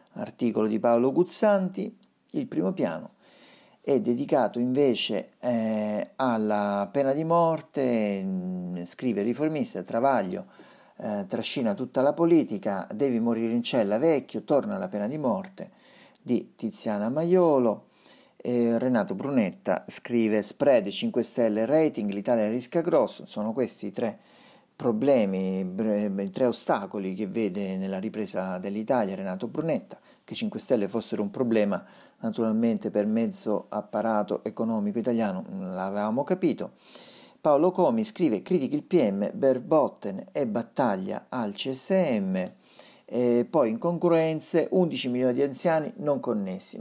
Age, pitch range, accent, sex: 50-69, 105-180 Hz, native, male